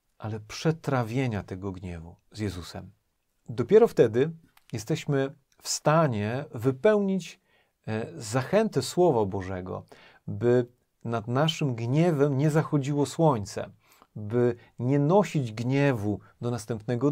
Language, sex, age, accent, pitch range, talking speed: Polish, male, 40-59, native, 105-145 Hz, 100 wpm